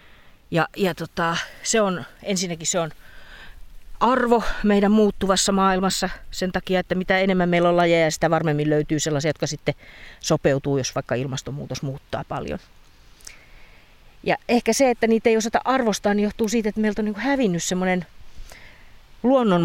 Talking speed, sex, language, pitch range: 155 wpm, female, Finnish, 145-200 Hz